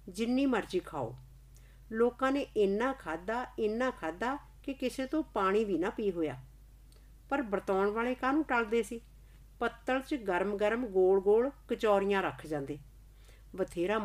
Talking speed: 135 wpm